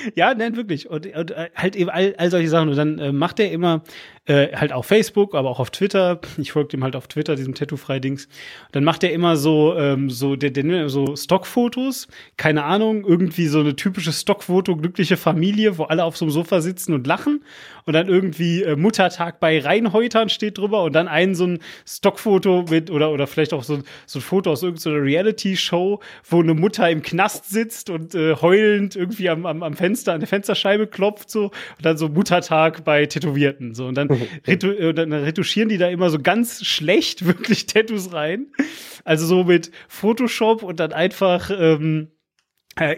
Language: German